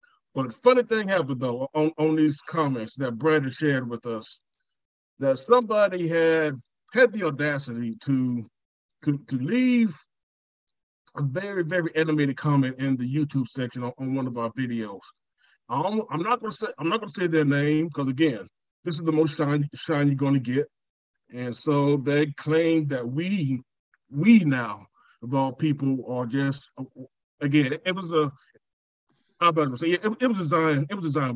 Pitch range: 130-160 Hz